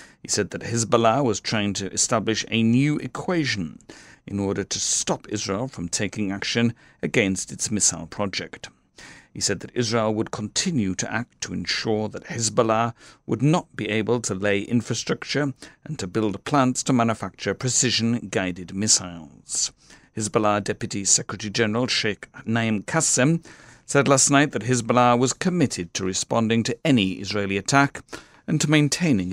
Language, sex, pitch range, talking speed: English, male, 100-130 Hz, 150 wpm